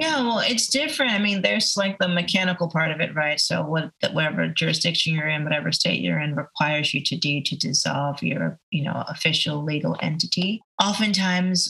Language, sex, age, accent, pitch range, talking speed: English, female, 30-49, American, 155-180 Hz, 185 wpm